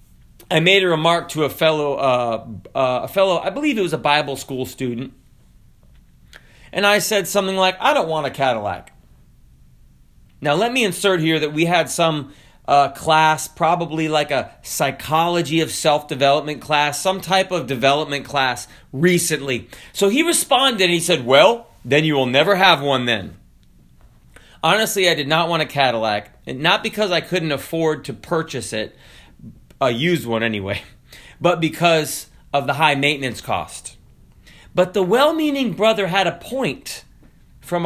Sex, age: male, 30-49